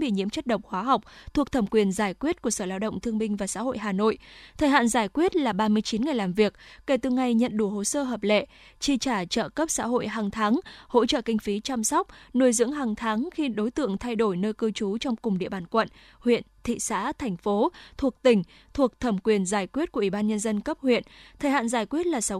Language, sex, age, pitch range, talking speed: Vietnamese, female, 20-39, 215-270 Hz, 255 wpm